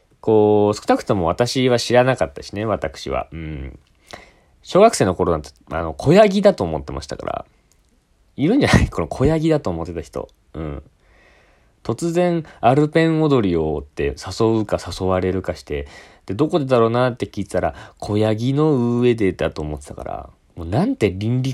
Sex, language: male, Japanese